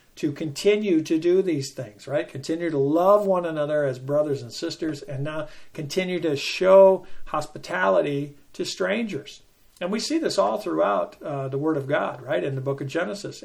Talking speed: 185 wpm